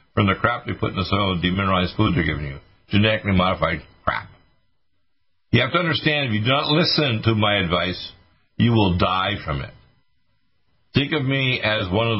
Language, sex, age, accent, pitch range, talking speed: English, male, 60-79, American, 90-115 Hz, 190 wpm